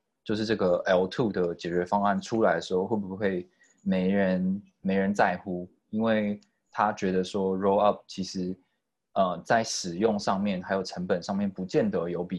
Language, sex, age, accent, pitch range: Chinese, male, 20-39, native, 90-105 Hz